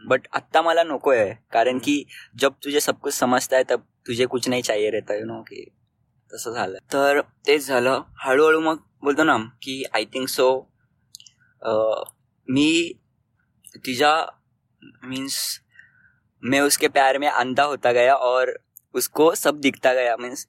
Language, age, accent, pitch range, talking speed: Marathi, 20-39, native, 120-145 Hz, 125 wpm